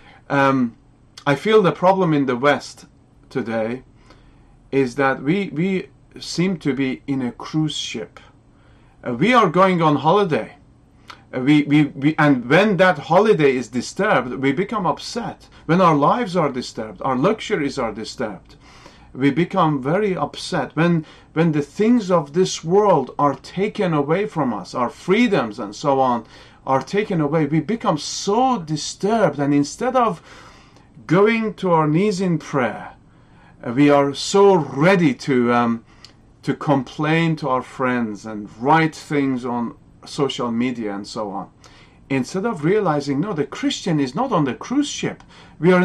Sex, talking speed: male, 155 wpm